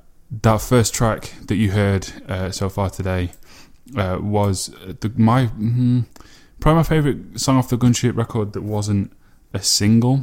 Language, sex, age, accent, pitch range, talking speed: English, male, 10-29, British, 95-110 Hz, 160 wpm